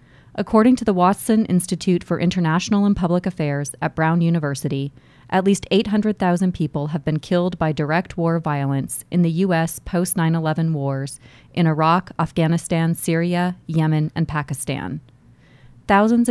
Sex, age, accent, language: female, 30-49, American, English